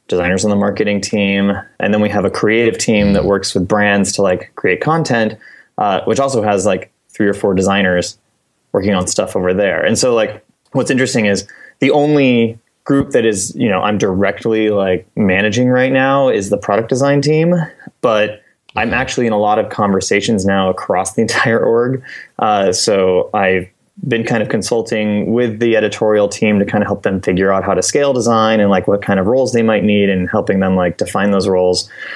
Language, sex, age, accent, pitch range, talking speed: English, male, 20-39, American, 95-115 Hz, 205 wpm